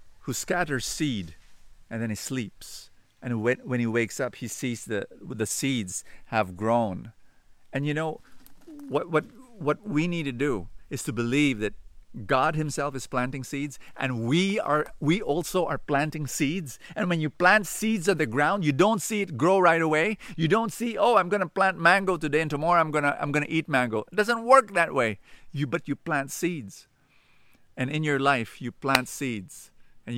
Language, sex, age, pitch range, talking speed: English, male, 50-69, 105-150 Hz, 195 wpm